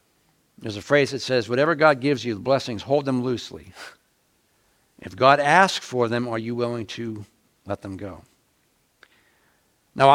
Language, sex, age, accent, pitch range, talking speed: English, male, 60-79, American, 125-165 Hz, 160 wpm